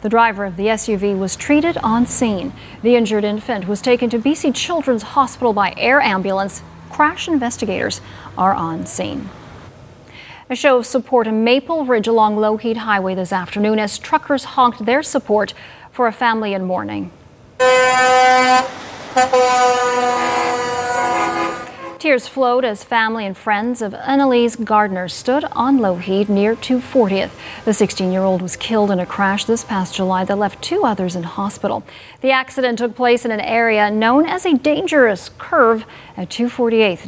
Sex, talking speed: female, 150 wpm